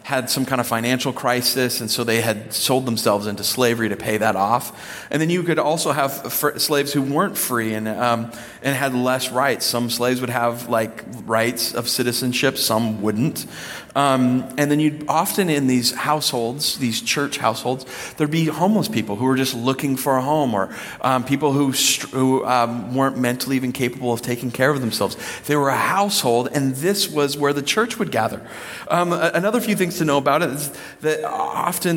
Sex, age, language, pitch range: male, 30-49, English, 115-145 Hz